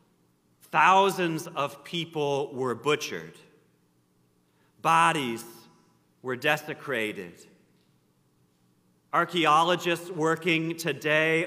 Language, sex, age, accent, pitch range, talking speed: English, male, 40-59, American, 110-160 Hz, 60 wpm